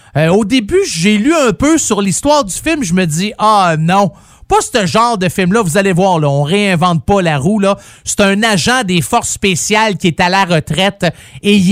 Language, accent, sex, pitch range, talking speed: French, Canadian, male, 185-240 Hz, 220 wpm